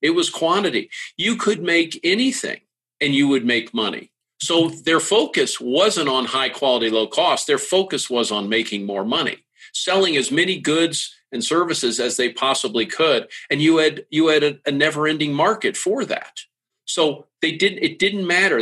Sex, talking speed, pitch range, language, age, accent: male, 180 wpm, 120-185 Hz, English, 50-69, American